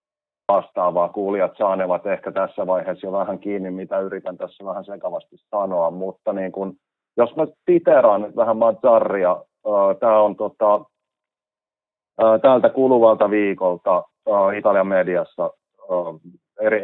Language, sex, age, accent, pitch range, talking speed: Finnish, male, 30-49, native, 95-110 Hz, 115 wpm